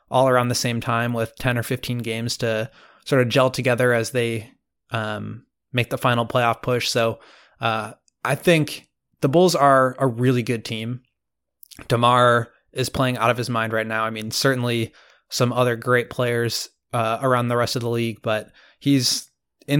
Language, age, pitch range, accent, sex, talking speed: English, 20-39, 115-135 Hz, American, male, 180 wpm